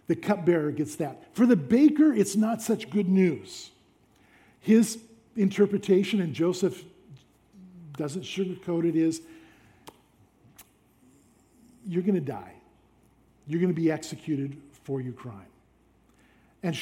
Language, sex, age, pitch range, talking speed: English, male, 50-69, 150-205 Hz, 110 wpm